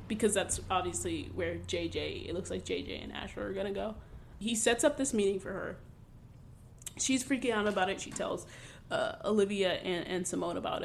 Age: 20-39